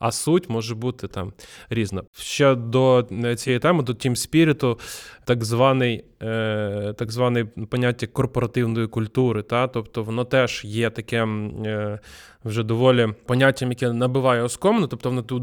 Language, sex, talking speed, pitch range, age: Ukrainian, male, 130 wpm, 115-145 Hz, 20-39